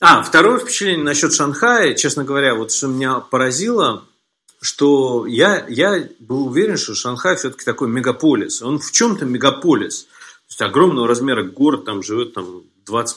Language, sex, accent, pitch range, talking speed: Russian, male, native, 115-155 Hz, 155 wpm